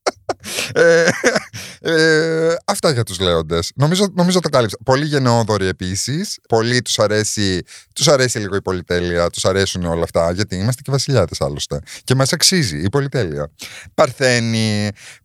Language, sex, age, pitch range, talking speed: Greek, male, 30-49, 90-120 Hz, 145 wpm